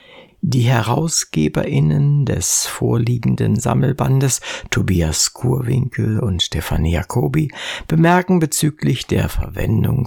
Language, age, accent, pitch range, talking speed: German, 60-79, German, 110-155 Hz, 85 wpm